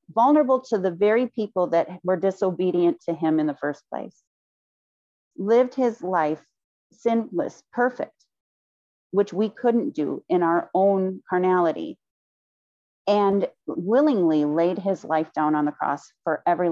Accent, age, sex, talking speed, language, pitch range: American, 40-59, female, 135 wpm, English, 165-210 Hz